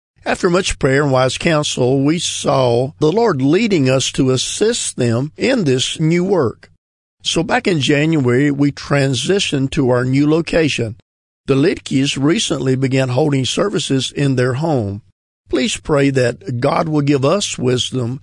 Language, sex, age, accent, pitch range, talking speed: English, male, 50-69, American, 125-155 Hz, 150 wpm